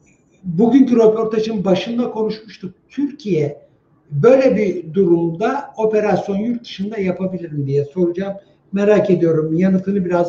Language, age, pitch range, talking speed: Turkish, 60-79, 180-225 Hz, 110 wpm